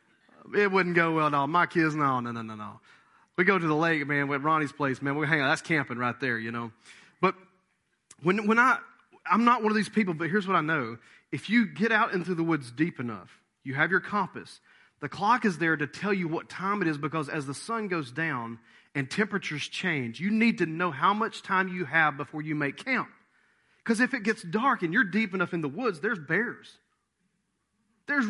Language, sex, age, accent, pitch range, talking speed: English, male, 30-49, American, 160-225 Hz, 230 wpm